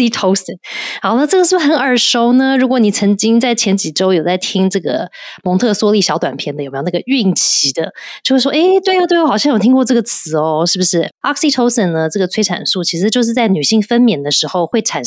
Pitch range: 170-230 Hz